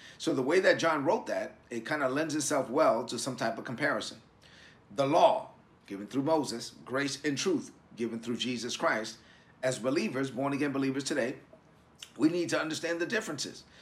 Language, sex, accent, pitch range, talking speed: English, male, American, 125-155 Hz, 180 wpm